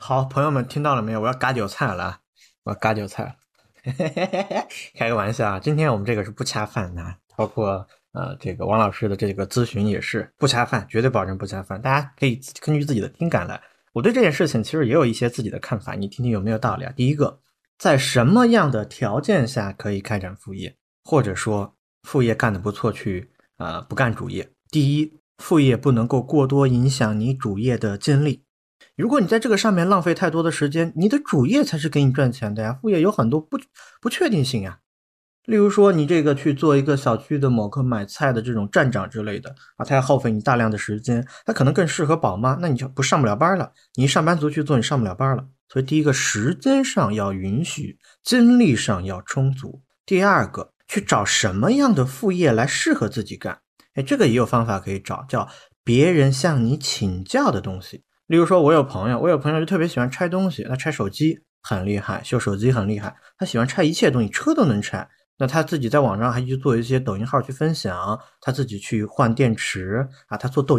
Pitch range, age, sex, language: 110-155 Hz, 20-39, male, Chinese